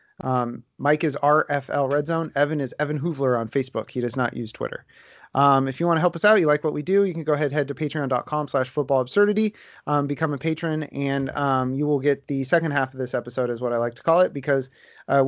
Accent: American